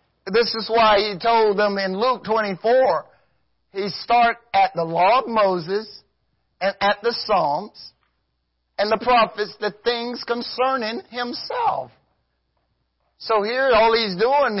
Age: 50-69